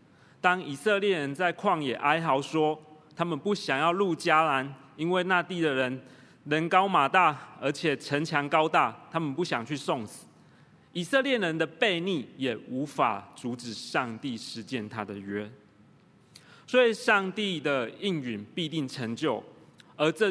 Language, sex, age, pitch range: Chinese, male, 30-49, 130-175 Hz